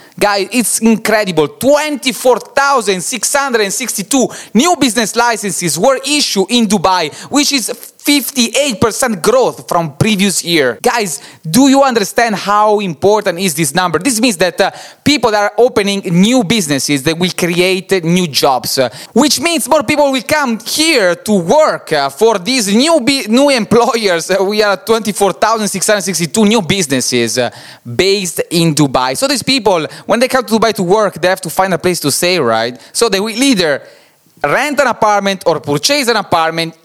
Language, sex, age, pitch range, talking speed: English, male, 20-39, 180-245 Hz, 160 wpm